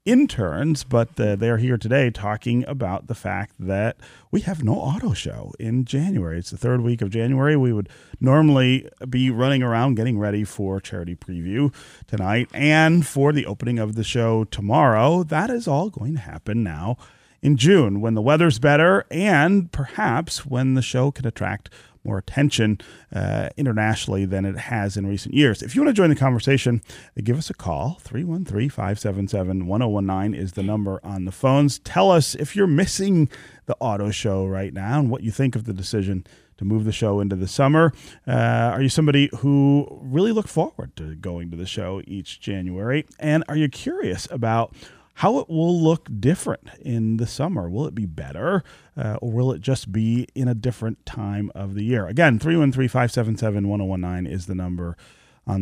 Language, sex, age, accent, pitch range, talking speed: English, male, 40-59, American, 100-140 Hz, 180 wpm